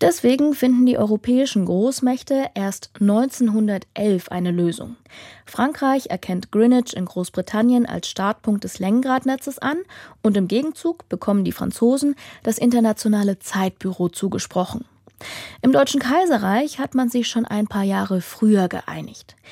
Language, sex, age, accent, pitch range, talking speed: German, female, 20-39, German, 200-260 Hz, 125 wpm